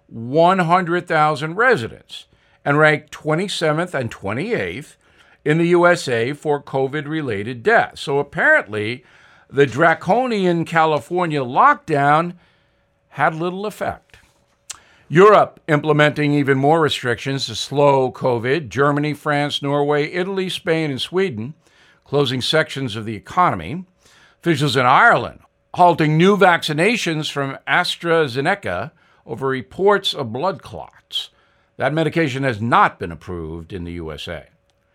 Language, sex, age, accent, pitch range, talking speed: English, male, 50-69, American, 130-170 Hz, 110 wpm